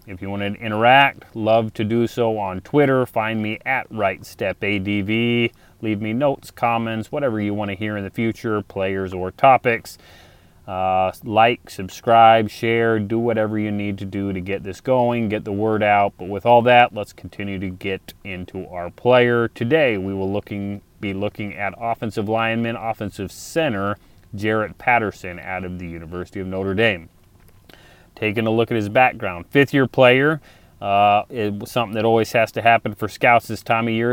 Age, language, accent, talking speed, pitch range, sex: 30-49, English, American, 180 wpm, 95-115 Hz, male